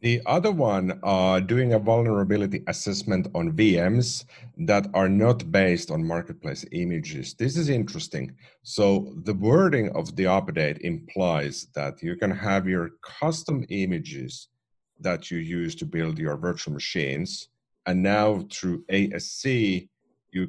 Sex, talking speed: male, 140 wpm